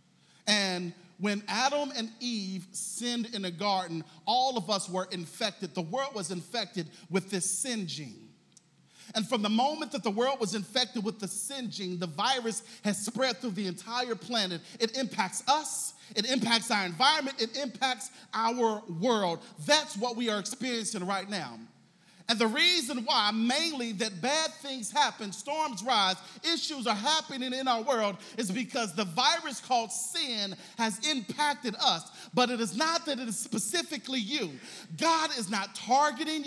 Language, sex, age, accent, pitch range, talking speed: English, male, 40-59, American, 210-285 Hz, 165 wpm